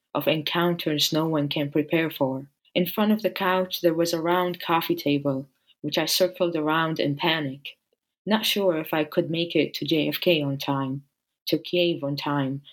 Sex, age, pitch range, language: female, 20-39, 150-175 Hz, English